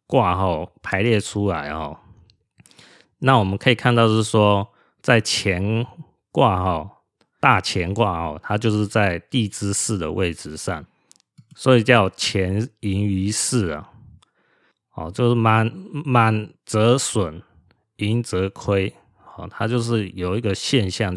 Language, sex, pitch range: Chinese, male, 90-115 Hz